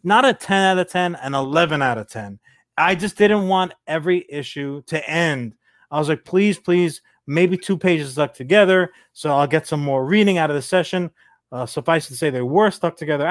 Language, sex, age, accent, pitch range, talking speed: English, male, 30-49, American, 145-195 Hz, 215 wpm